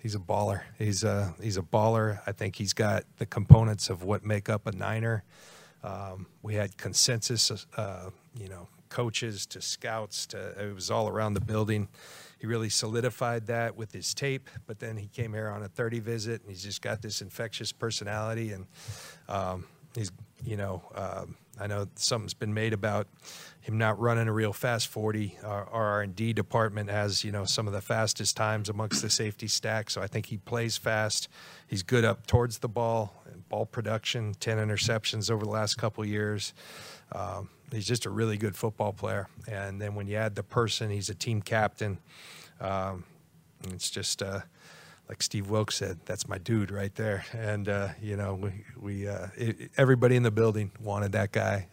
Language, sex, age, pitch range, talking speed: English, male, 40-59, 100-115 Hz, 195 wpm